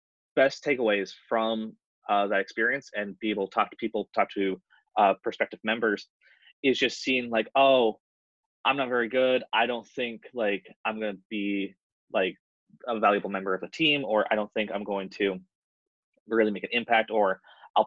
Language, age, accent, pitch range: English, 20-39, American, 100-120 Hz